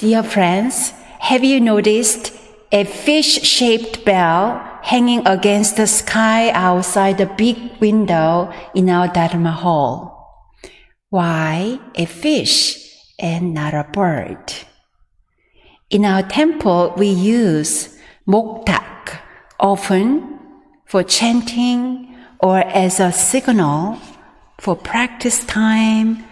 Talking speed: 100 wpm